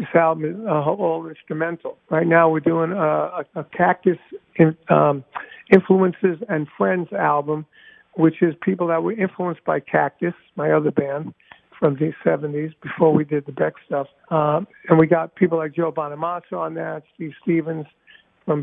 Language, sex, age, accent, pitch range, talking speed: English, male, 50-69, American, 155-180 Hz, 170 wpm